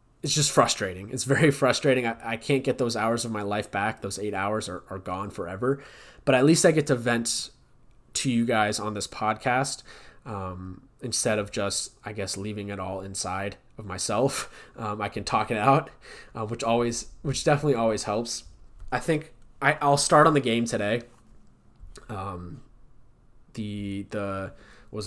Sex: male